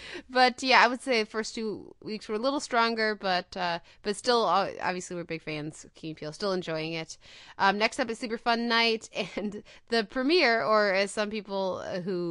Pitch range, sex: 190-235 Hz, female